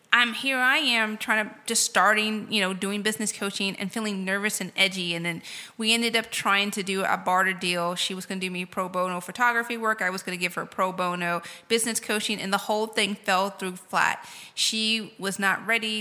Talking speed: 230 wpm